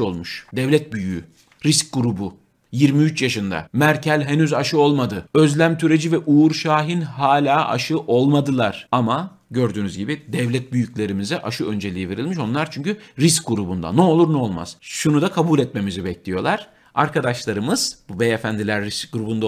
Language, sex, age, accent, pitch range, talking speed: Turkish, male, 50-69, native, 110-165 Hz, 135 wpm